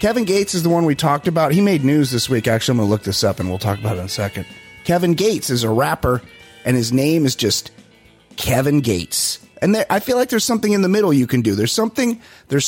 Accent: American